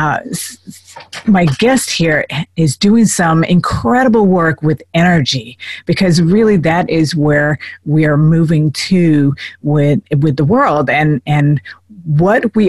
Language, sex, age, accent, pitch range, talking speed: English, female, 50-69, American, 150-190 Hz, 130 wpm